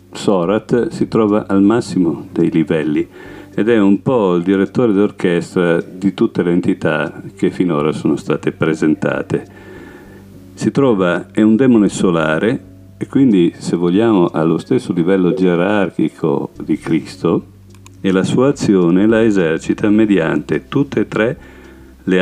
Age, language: 50-69, Italian